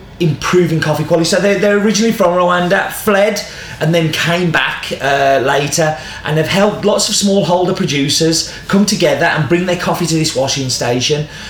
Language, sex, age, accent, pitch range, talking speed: English, male, 30-49, British, 140-175 Hz, 170 wpm